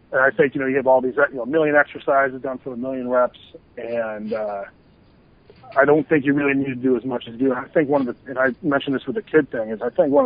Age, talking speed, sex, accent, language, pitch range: 40-59, 300 wpm, male, American, English, 120-145 Hz